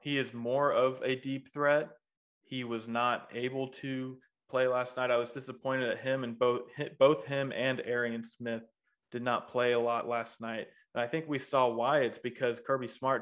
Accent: American